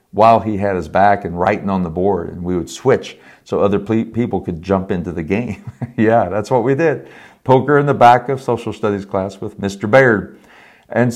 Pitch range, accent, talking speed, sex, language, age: 100-120 Hz, American, 210 wpm, male, English, 50-69